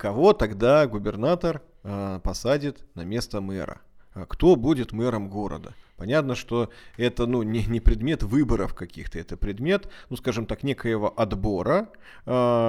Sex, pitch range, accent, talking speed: male, 100-150 Hz, native, 135 wpm